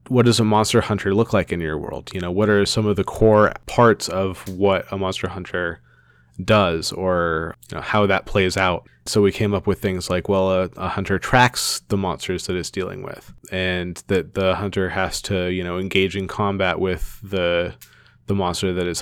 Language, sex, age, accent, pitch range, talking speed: English, male, 20-39, American, 90-100 Hz, 210 wpm